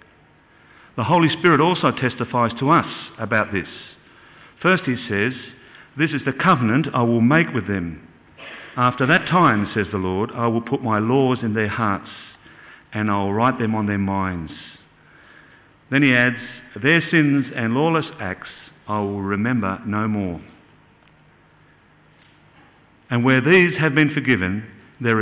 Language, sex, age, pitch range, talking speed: English, male, 50-69, 105-145 Hz, 150 wpm